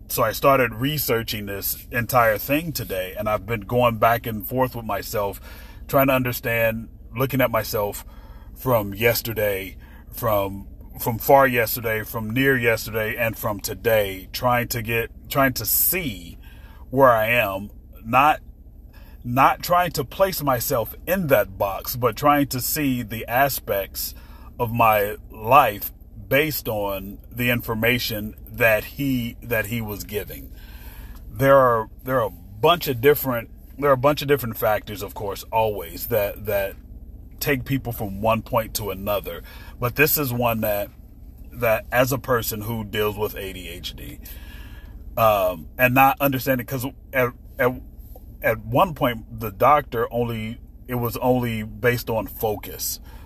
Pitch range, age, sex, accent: 100-125 Hz, 30-49, male, American